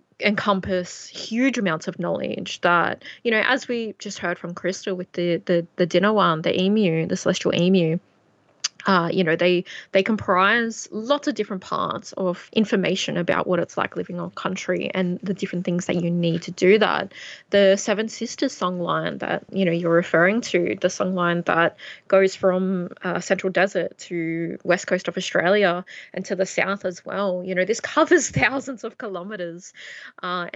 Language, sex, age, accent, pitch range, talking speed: English, female, 20-39, Australian, 180-210 Hz, 185 wpm